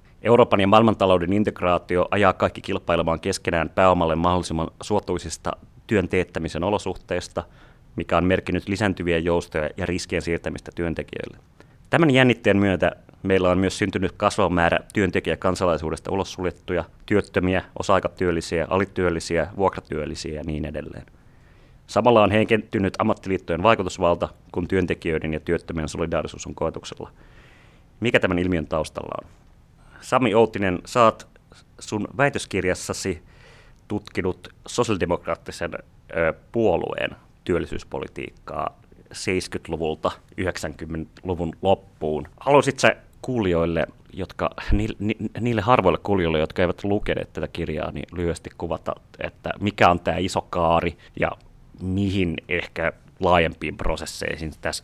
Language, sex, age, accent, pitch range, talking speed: Finnish, male, 30-49, native, 85-100 Hz, 105 wpm